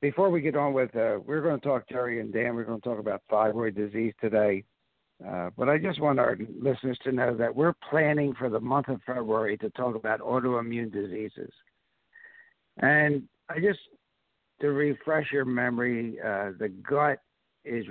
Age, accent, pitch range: 60-79, American, 110-135 Hz